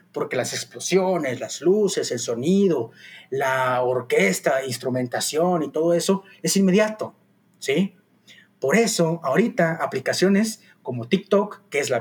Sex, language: male, Spanish